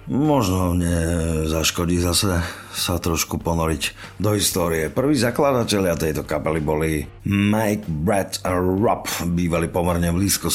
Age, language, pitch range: 50-69, Slovak, 80-95 Hz